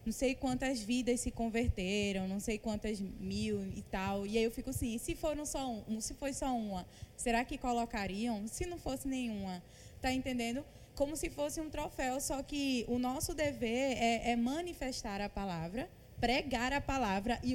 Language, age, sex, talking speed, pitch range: Portuguese, 20-39, female, 180 wpm, 225-285 Hz